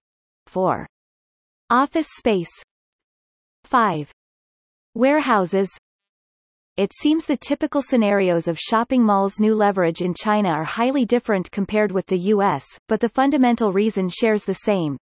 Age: 30-49